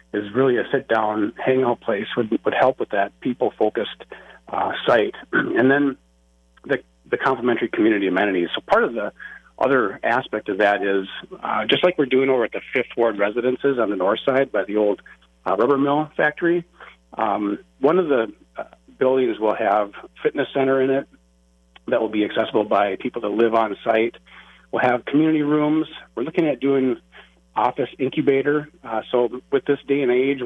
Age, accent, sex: 40-59, American, male